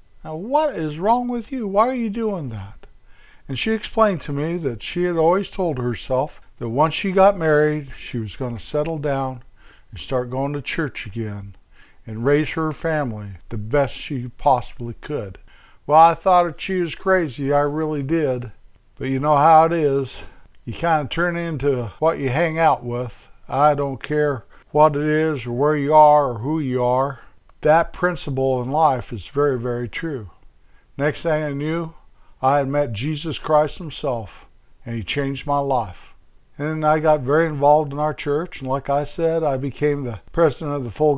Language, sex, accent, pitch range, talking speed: English, male, American, 130-160 Hz, 190 wpm